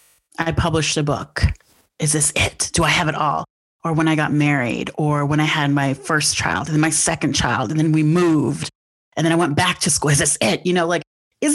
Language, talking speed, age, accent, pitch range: English, 245 wpm, 30-49, American, 155-205 Hz